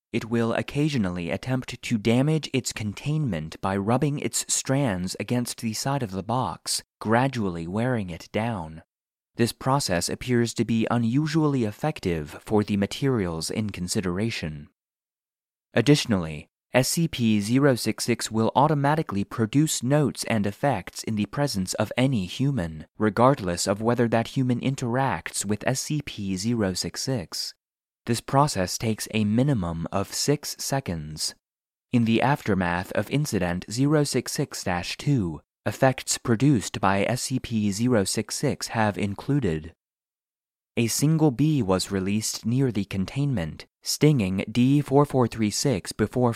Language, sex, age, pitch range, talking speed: English, male, 30-49, 95-130 Hz, 115 wpm